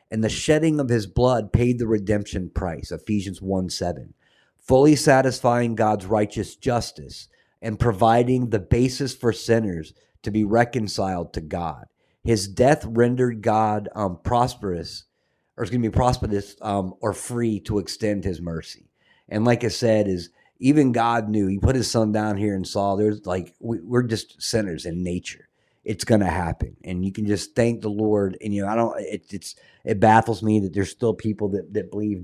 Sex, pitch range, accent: male, 95-120 Hz, American